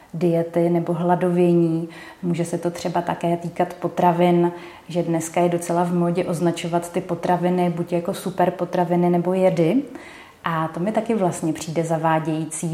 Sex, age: female, 30-49